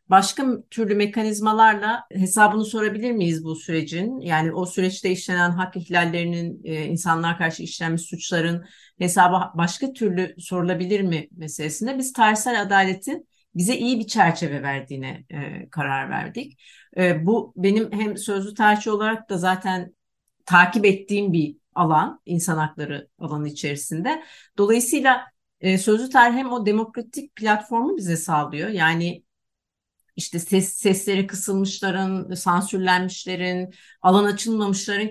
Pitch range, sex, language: 175-215 Hz, female, Turkish